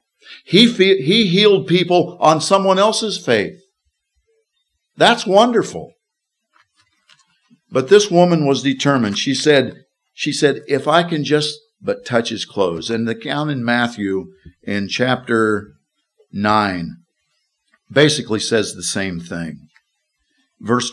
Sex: male